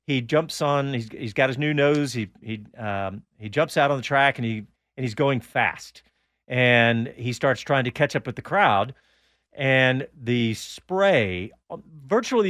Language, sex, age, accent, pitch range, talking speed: English, male, 40-59, American, 115-150 Hz, 185 wpm